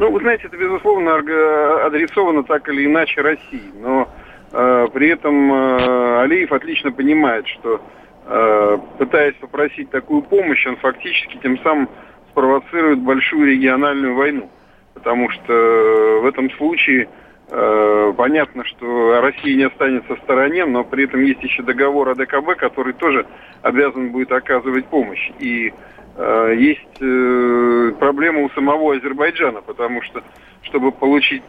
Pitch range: 125-150 Hz